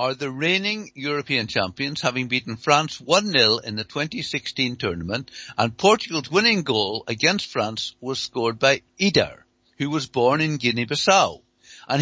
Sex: male